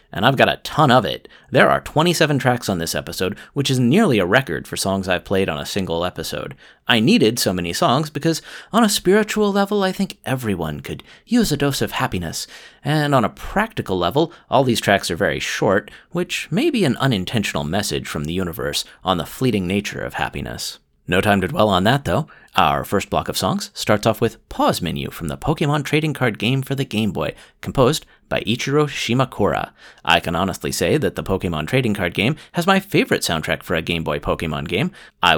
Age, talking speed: 30-49, 210 wpm